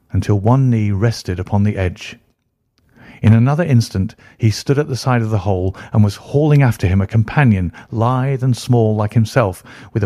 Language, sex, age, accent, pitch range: Korean, male, 40-59, British, 105-130 Hz